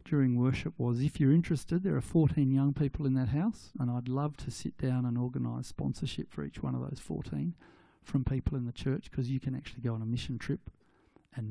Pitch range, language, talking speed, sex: 115-135 Hz, English, 230 wpm, male